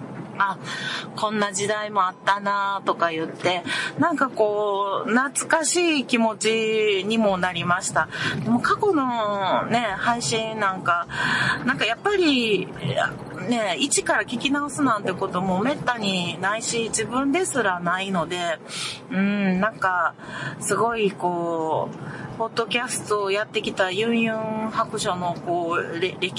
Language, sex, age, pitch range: Japanese, female, 40-59, 175-235 Hz